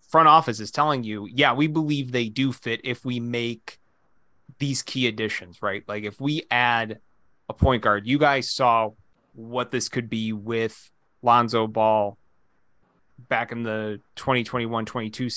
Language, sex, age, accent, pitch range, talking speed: English, male, 20-39, American, 110-130 Hz, 150 wpm